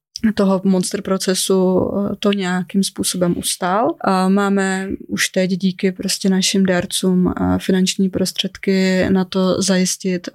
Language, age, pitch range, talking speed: Czech, 20-39, 175-195 Hz, 115 wpm